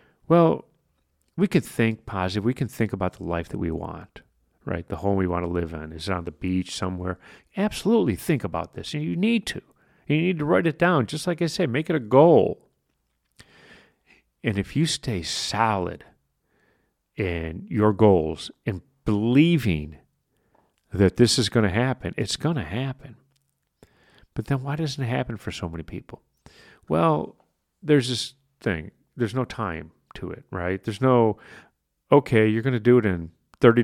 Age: 50-69